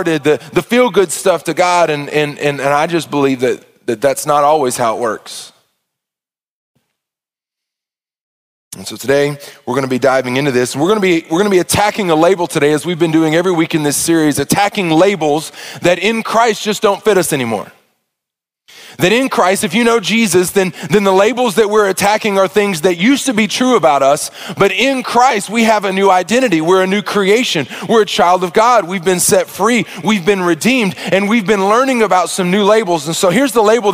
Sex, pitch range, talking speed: male, 170-220 Hz, 210 wpm